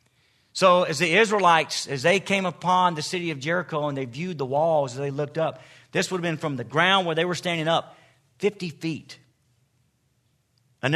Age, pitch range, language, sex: 50-69, 130-175 Hz, English, male